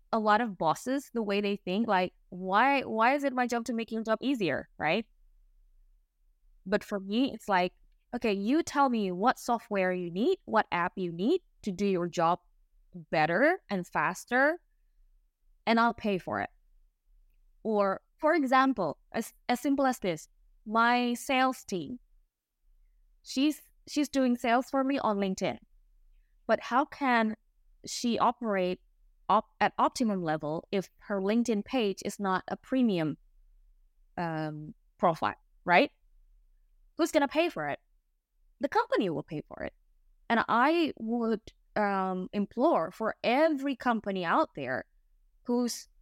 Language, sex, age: English, female, 20-39